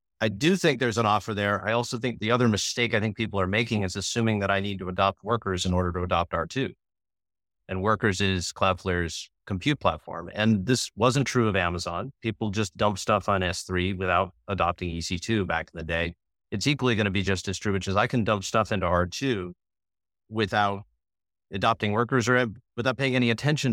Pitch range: 90-115 Hz